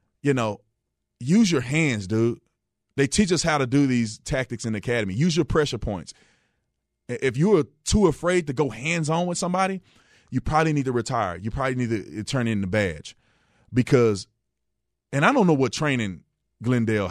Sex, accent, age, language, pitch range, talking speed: male, American, 30-49, English, 105-135 Hz, 180 wpm